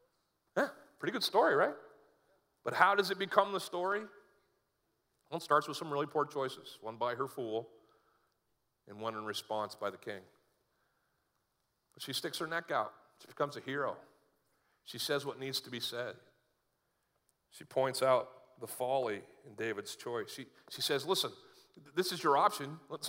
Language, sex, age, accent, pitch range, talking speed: English, male, 40-59, American, 125-155 Hz, 165 wpm